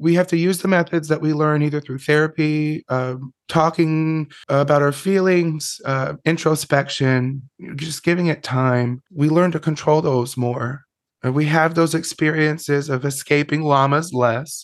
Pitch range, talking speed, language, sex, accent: 125-150 Hz, 155 wpm, English, male, American